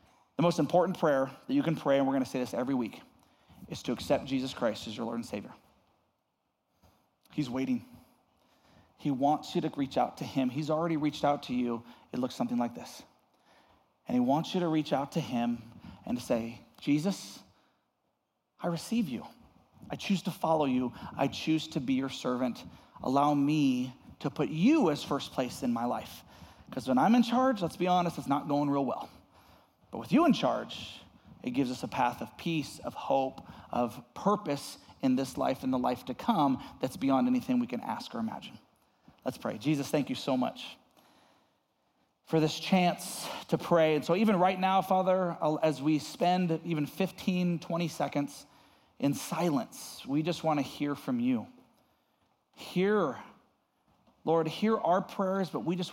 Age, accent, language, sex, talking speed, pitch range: 30-49, American, English, male, 185 wpm, 135-180 Hz